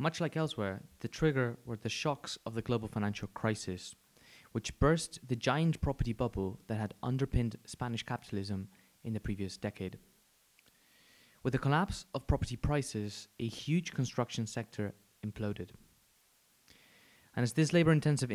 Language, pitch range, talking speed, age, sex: English, 110-145 Hz, 140 wpm, 20-39, male